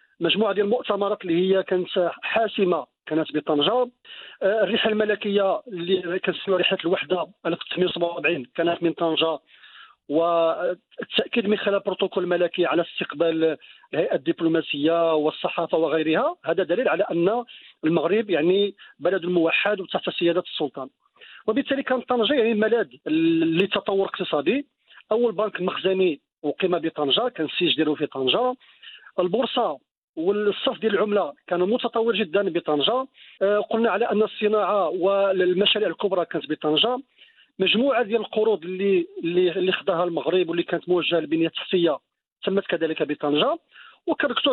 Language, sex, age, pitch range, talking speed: Arabic, male, 50-69, 165-220 Hz, 120 wpm